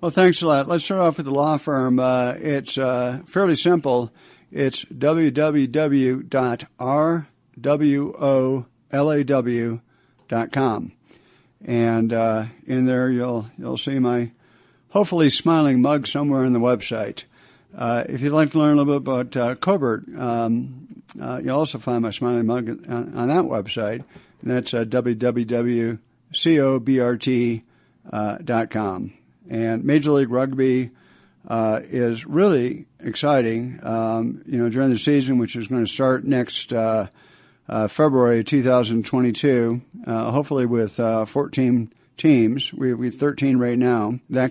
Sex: male